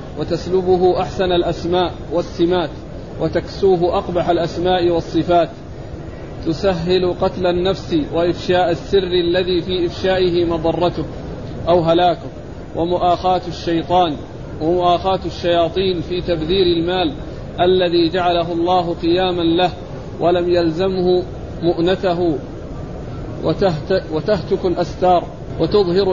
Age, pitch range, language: 40-59, 170-185 Hz, Arabic